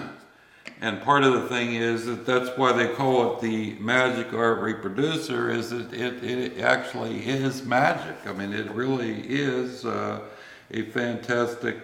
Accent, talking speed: American, 160 wpm